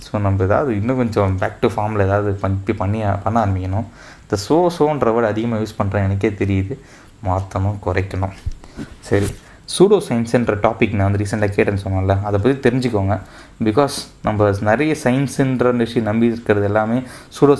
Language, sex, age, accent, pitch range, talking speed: Tamil, male, 20-39, native, 100-120 Hz, 150 wpm